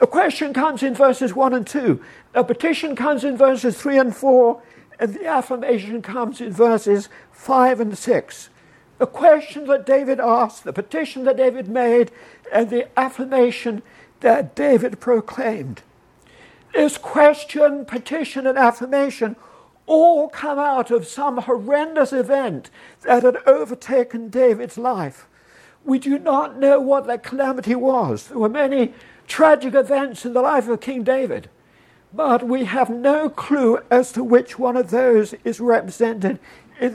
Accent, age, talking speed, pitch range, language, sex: British, 60-79, 150 wpm, 240-290 Hz, English, male